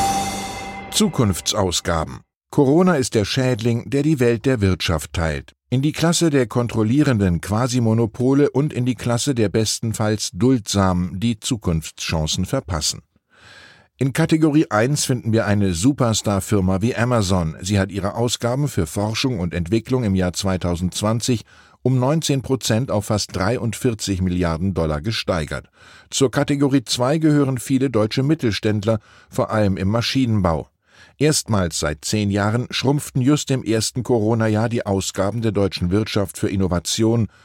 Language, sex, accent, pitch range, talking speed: German, male, German, 95-125 Hz, 130 wpm